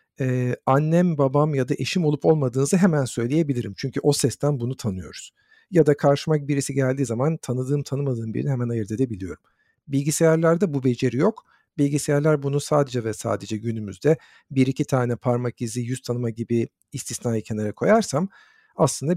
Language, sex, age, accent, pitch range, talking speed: Turkish, male, 50-69, native, 120-150 Hz, 155 wpm